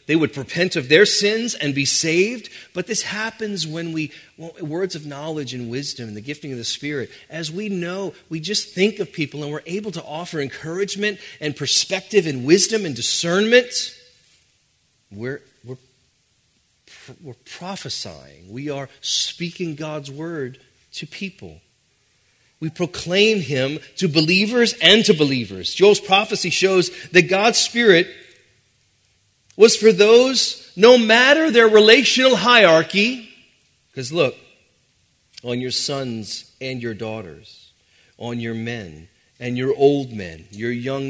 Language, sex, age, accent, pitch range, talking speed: English, male, 40-59, American, 120-180 Hz, 140 wpm